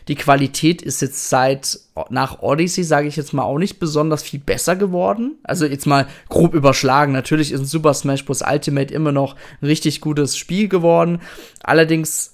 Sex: male